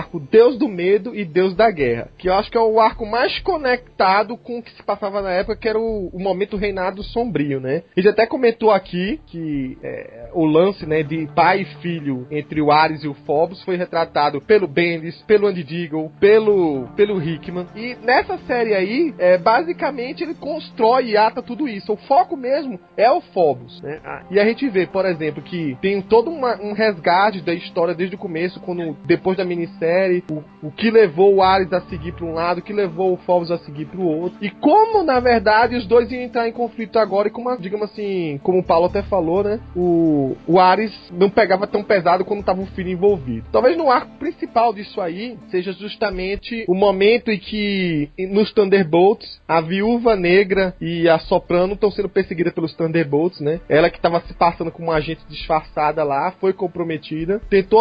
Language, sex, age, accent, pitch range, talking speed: Portuguese, male, 20-39, Brazilian, 170-220 Hz, 205 wpm